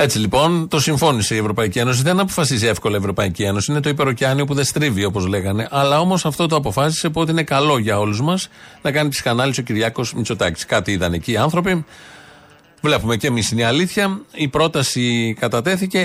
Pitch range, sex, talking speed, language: 110-145 Hz, male, 190 wpm, Greek